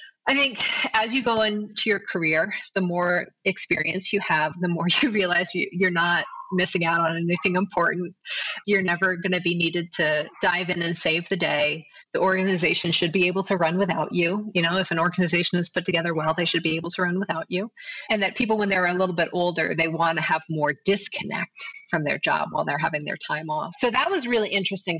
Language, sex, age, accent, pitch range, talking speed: English, female, 30-49, American, 160-195 Hz, 220 wpm